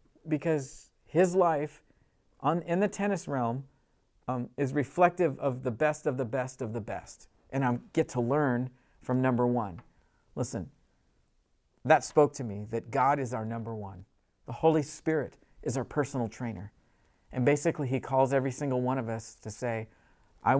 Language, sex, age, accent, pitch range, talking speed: English, male, 50-69, American, 125-160 Hz, 165 wpm